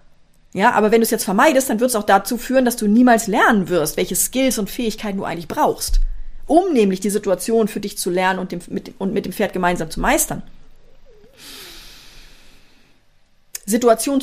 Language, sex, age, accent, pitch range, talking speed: German, female, 40-59, German, 205-250 Hz, 185 wpm